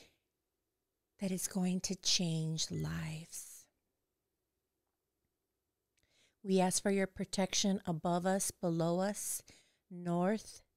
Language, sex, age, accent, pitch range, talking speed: English, female, 30-49, American, 165-190 Hz, 90 wpm